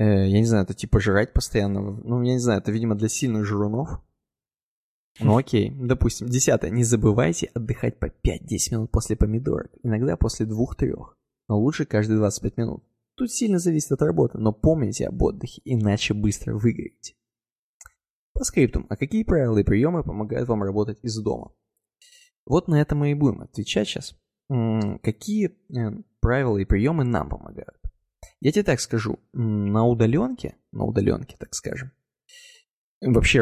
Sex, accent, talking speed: male, native, 155 wpm